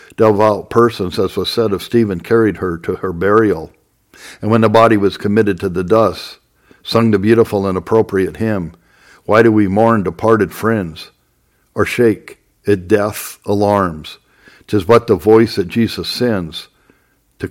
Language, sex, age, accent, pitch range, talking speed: English, male, 60-79, American, 90-110 Hz, 160 wpm